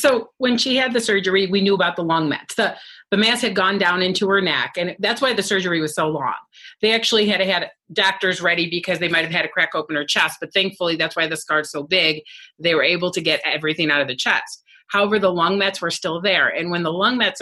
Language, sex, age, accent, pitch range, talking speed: English, female, 30-49, American, 160-200 Hz, 260 wpm